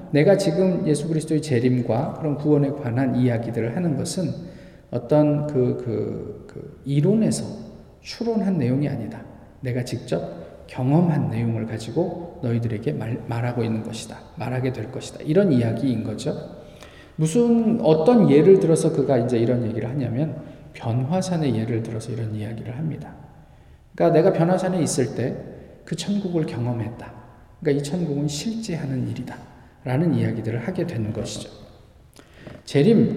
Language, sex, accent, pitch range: Korean, male, native, 120-170 Hz